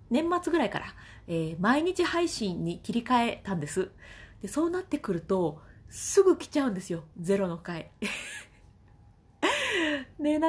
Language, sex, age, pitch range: Japanese, female, 30-49, 185-275 Hz